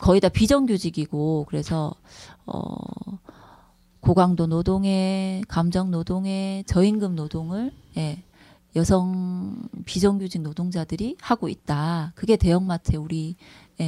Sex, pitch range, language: female, 165-220 Hz, Korean